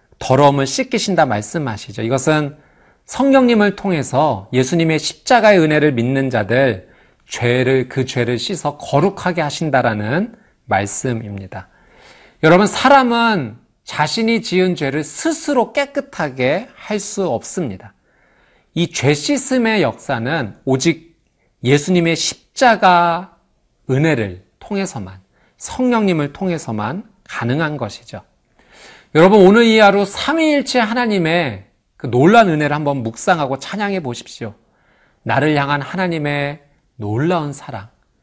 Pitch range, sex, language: 125-185 Hz, male, Korean